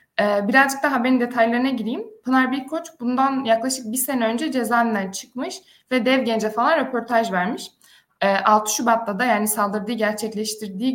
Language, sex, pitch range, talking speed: Turkish, female, 210-260 Hz, 140 wpm